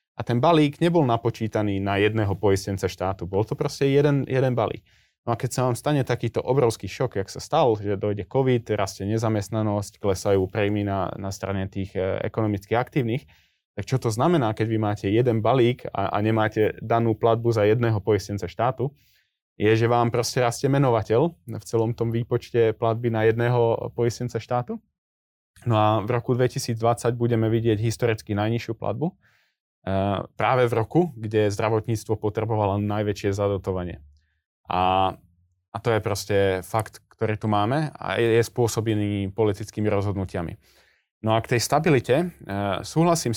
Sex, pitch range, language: male, 100-120 Hz, Slovak